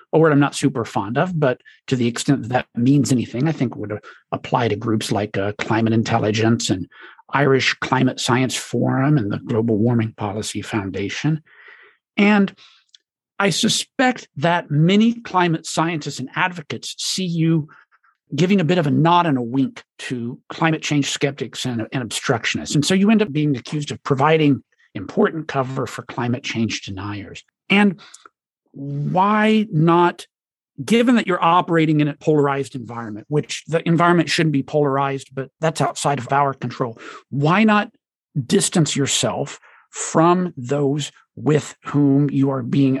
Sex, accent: male, American